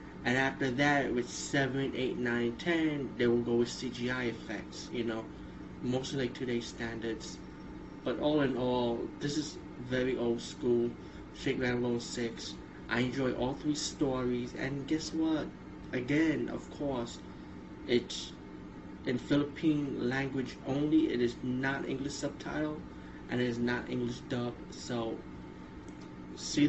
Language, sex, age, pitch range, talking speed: English, male, 20-39, 115-135 Hz, 140 wpm